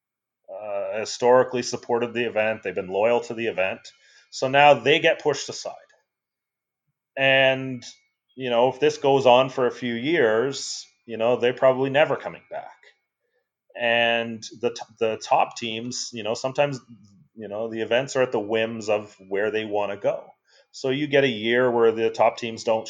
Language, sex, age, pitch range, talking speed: English, male, 30-49, 110-130 Hz, 175 wpm